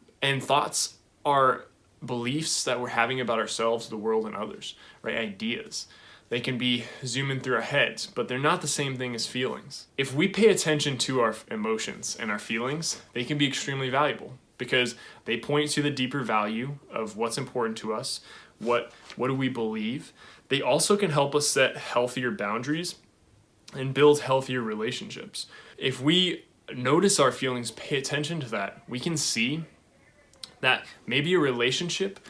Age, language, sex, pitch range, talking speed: 20-39, English, male, 120-150 Hz, 165 wpm